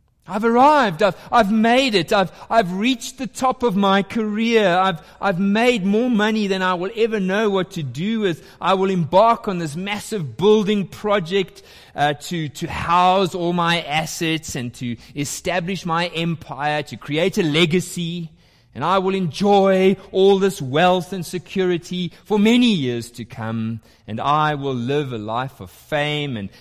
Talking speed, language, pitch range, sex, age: 170 wpm, English, 125-195 Hz, male, 30-49